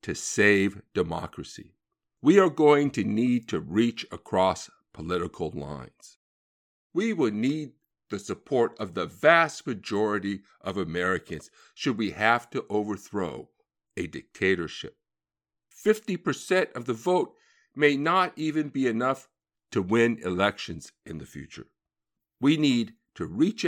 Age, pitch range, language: 50-69, 105-145 Hz, English